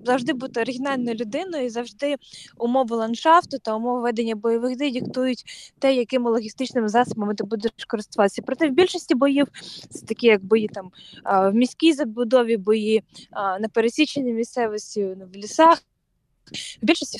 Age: 20-39